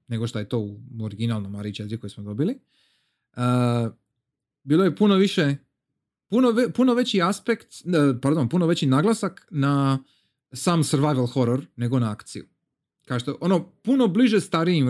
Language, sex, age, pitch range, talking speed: Croatian, male, 30-49, 120-165 Hz, 155 wpm